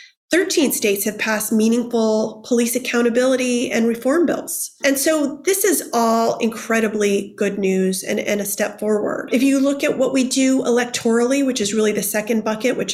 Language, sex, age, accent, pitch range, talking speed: English, female, 30-49, American, 205-250 Hz, 175 wpm